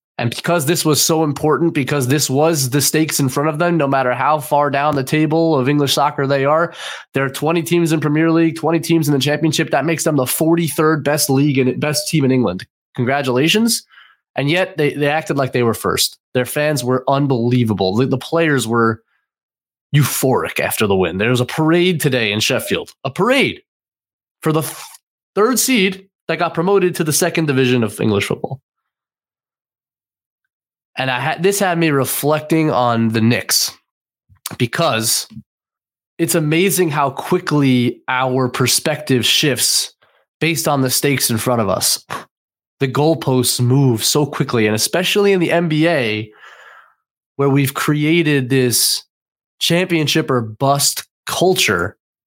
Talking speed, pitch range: 160 wpm, 130-165 Hz